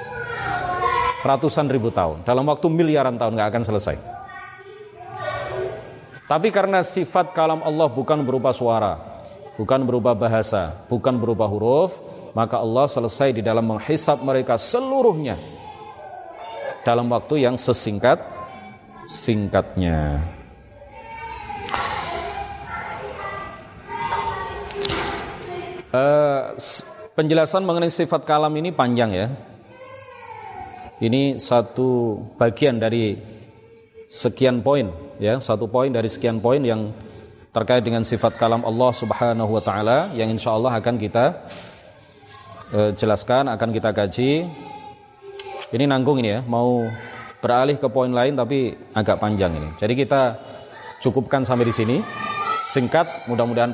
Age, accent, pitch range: 30-49, native, 115-170 Hz